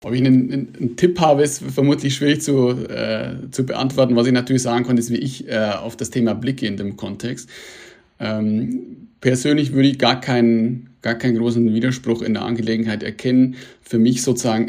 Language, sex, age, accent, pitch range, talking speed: German, male, 30-49, German, 110-125 Hz, 190 wpm